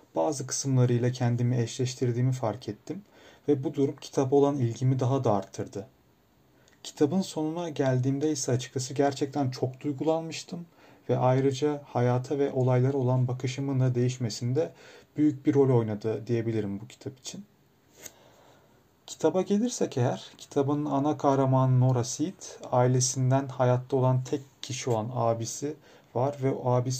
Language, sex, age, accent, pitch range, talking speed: Turkish, male, 40-59, native, 120-140 Hz, 135 wpm